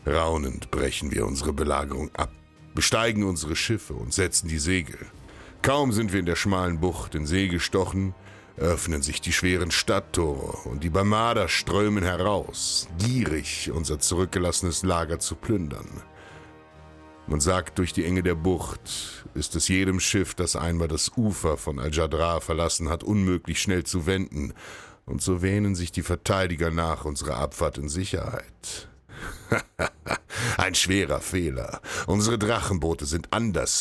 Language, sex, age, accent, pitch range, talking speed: German, male, 60-79, German, 80-95 Hz, 140 wpm